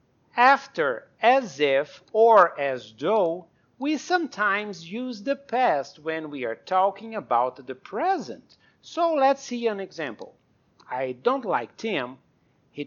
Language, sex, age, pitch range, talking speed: English, male, 50-69, 155-255 Hz, 130 wpm